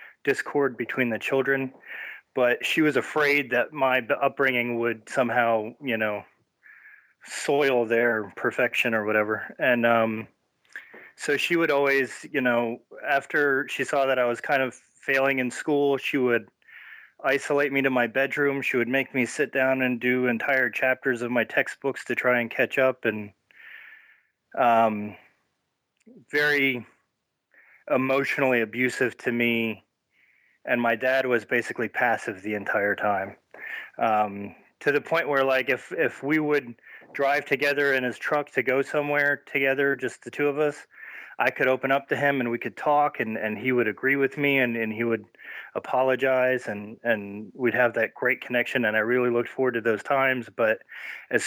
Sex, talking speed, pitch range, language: male, 165 wpm, 115-140 Hz, English